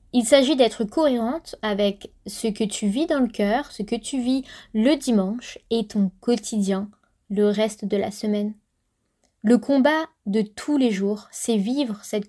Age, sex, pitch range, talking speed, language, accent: 20-39, female, 210-260 Hz, 170 wpm, French, French